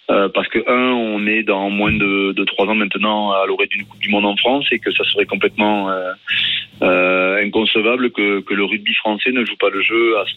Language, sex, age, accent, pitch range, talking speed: French, male, 30-49, French, 100-120 Hz, 235 wpm